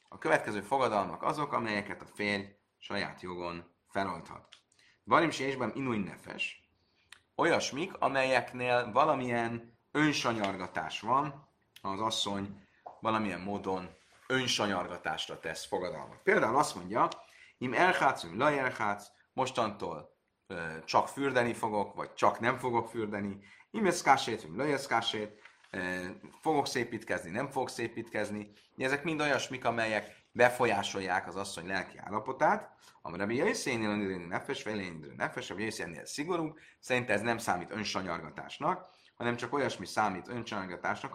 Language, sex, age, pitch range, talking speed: Hungarian, male, 30-49, 95-120 Hz, 125 wpm